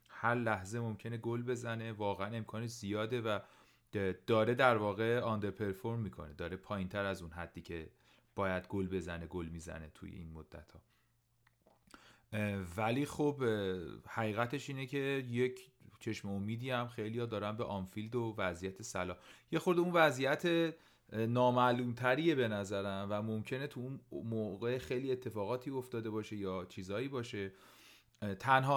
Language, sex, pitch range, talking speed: Persian, male, 95-120 Hz, 140 wpm